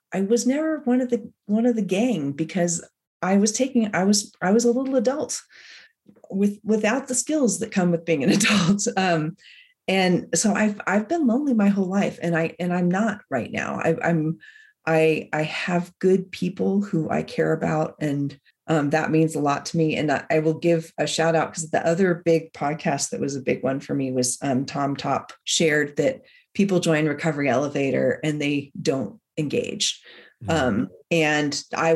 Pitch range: 150-200 Hz